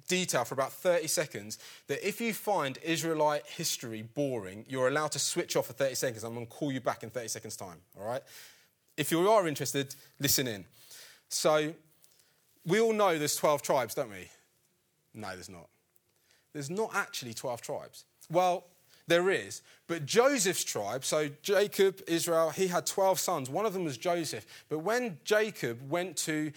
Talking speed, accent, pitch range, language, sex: 175 wpm, British, 140-180 Hz, English, male